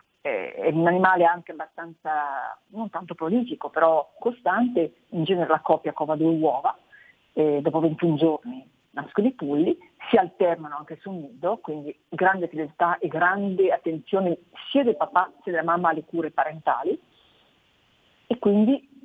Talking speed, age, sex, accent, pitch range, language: 145 wpm, 40-59, female, native, 160-190 Hz, Italian